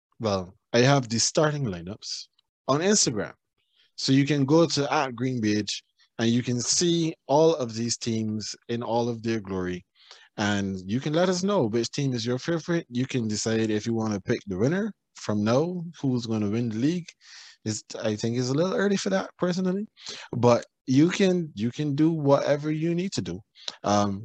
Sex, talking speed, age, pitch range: male, 200 wpm, 20-39, 105-145 Hz